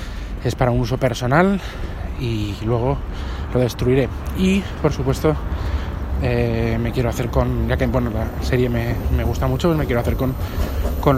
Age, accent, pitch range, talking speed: 20-39, Spanish, 105-130 Hz, 170 wpm